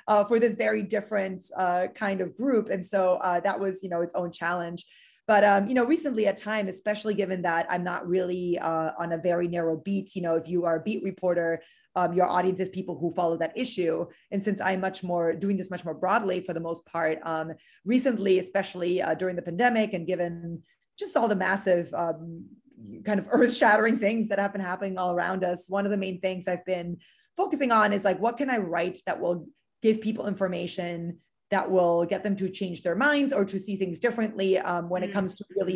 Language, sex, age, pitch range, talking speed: English, female, 30-49, 180-210 Hz, 225 wpm